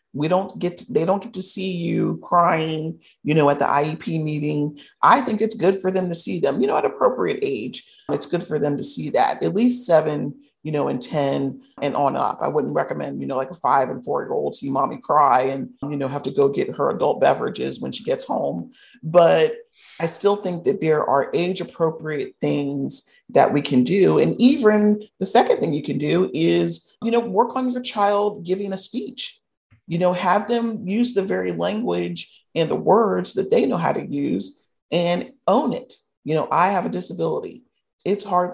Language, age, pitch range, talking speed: English, 40-59, 145-215 Hz, 210 wpm